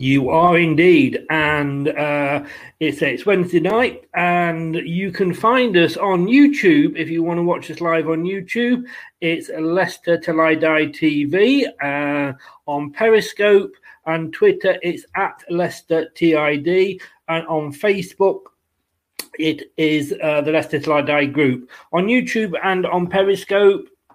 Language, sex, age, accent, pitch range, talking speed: English, male, 40-59, British, 155-195 Hz, 130 wpm